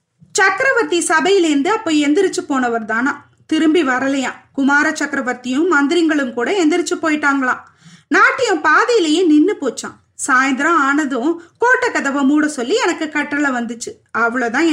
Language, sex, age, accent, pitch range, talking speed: Tamil, female, 20-39, native, 260-360 Hz, 115 wpm